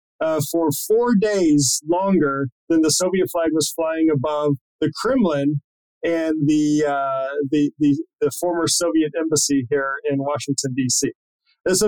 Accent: American